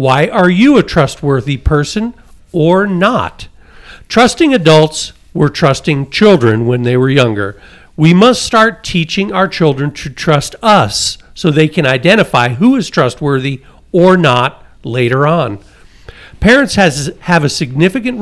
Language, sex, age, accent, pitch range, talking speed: English, male, 50-69, American, 135-185 Hz, 135 wpm